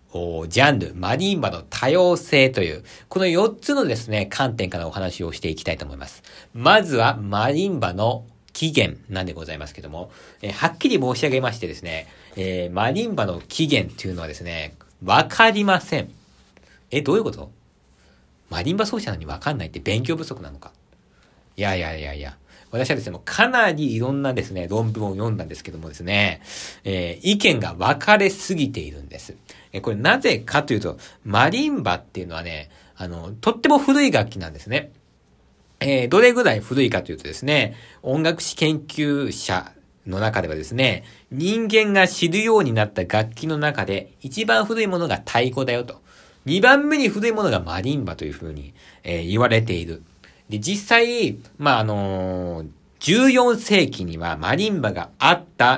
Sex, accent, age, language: male, native, 40-59, Japanese